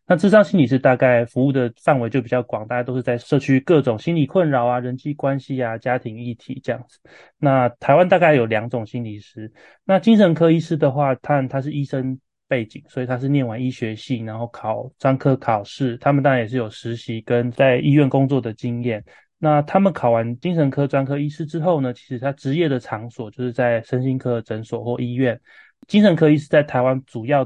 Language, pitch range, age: Chinese, 120-145 Hz, 20-39